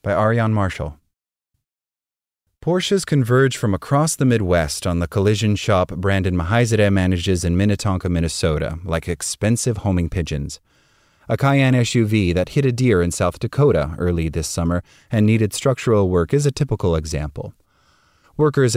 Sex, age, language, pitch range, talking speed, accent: male, 30-49, English, 85-115 Hz, 145 wpm, American